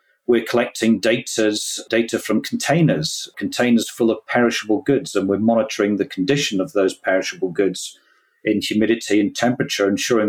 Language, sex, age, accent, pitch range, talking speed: English, male, 40-59, British, 105-135 Hz, 145 wpm